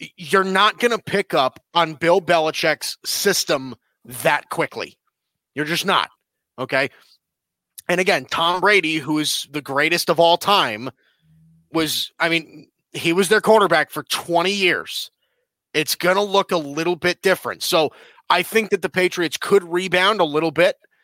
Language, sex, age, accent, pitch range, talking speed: English, male, 30-49, American, 160-205 Hz, 160 wpm